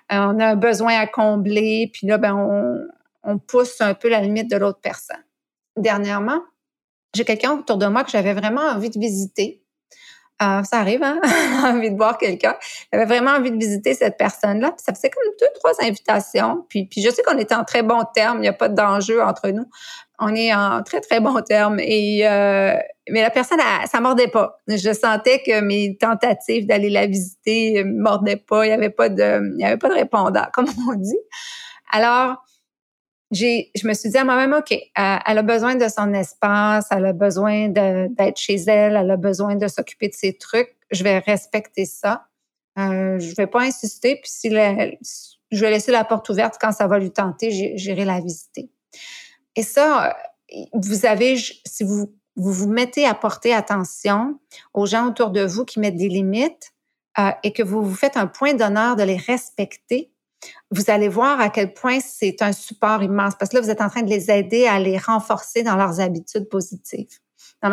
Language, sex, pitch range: French, female, 205-245 Hz